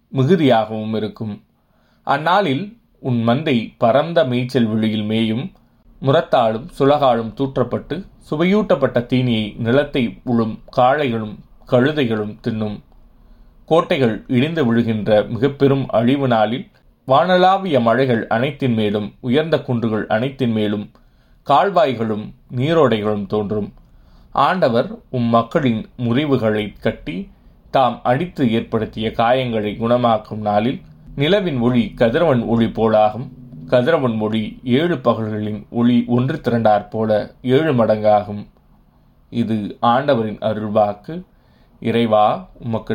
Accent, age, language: native, 30-49, Tamil